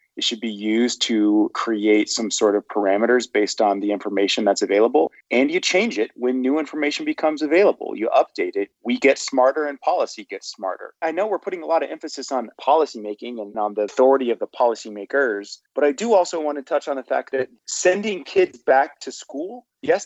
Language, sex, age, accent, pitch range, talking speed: English, male, 30-49, American, 115-160 Hz, 205 wpm